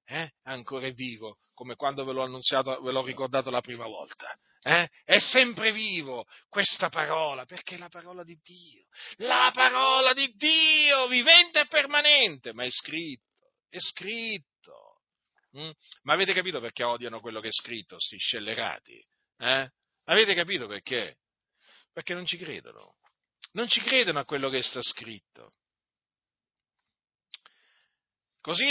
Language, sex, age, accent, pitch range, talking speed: Italian, male, 40-59, native, 135-220 Hz, 145 wpm